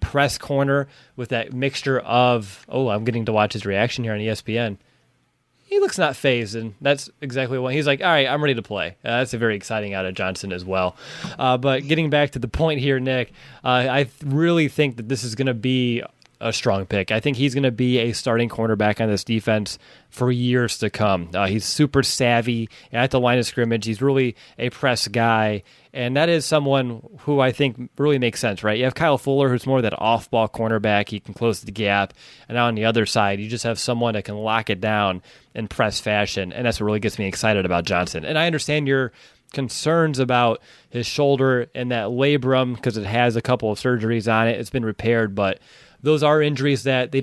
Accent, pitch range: American, 110-135 Hz